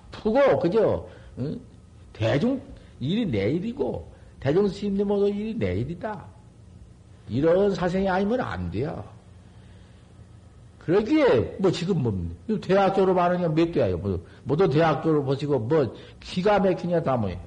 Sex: male